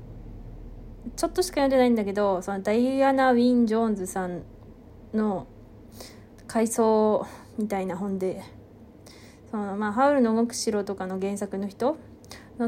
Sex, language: female, Japanese